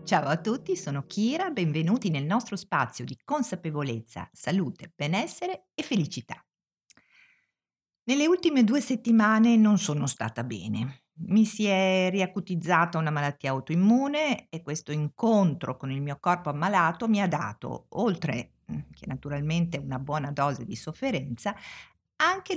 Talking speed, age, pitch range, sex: 135 wpm, 50-69, 150-240 Hz, female